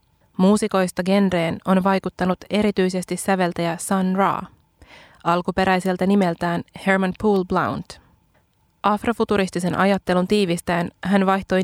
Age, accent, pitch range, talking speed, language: 20-39, native, 180-200 Hz, 95 wpm, Finnish